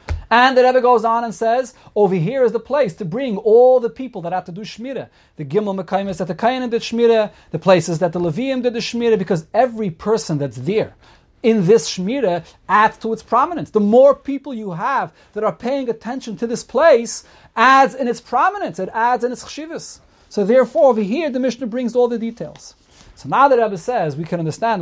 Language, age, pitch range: English, 30-49, 170-230 Hz